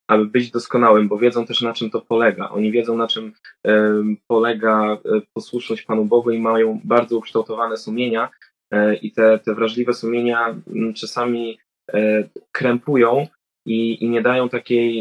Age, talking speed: 20-39, 140 wpm